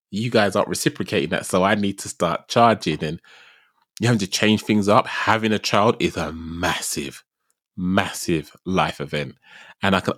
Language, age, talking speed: English, 20-39, 175 wpm